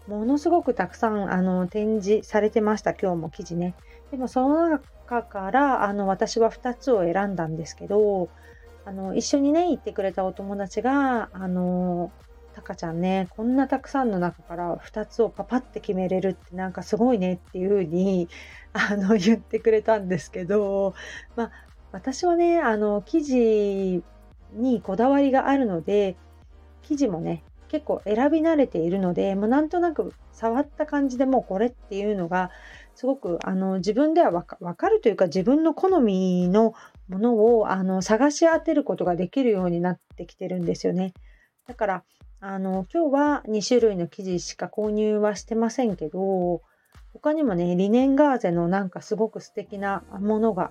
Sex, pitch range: female, 185-250 Hz